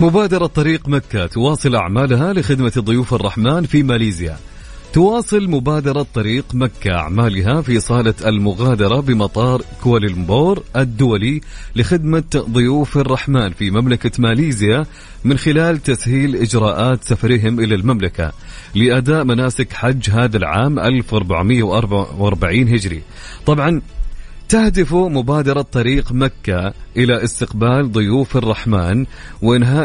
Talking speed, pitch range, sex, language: 105 wpm, 110-140 Hz, male, English